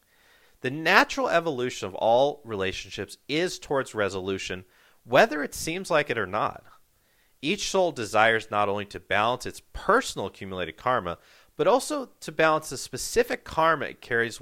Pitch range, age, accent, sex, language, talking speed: 95-145 Hz, 40-59, American, male, English, 150 wpm